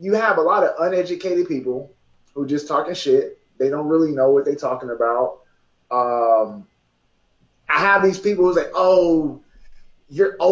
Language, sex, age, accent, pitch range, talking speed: English, male, 20-39, American, 140-225 Hz, 170 wpm